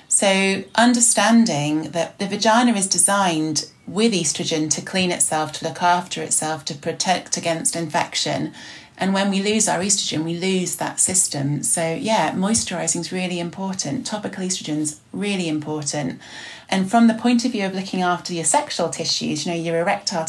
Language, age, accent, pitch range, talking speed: English, 30-49, British, 160-195 Hz, 170 wpm